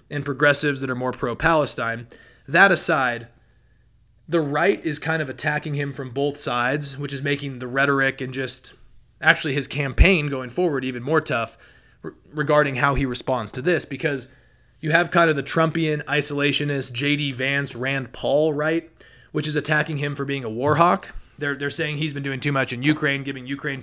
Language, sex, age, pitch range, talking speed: English, male, 30-49, 125-150 Hz, 185 wpm